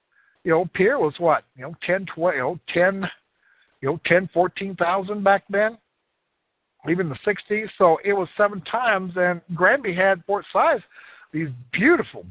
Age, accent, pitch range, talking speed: 60-79, American, 155-200 Hz, 175 wpm